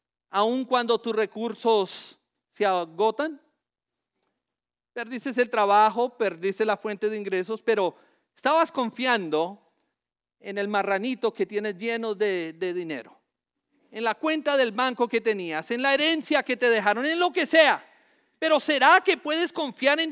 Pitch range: 220-285 Hz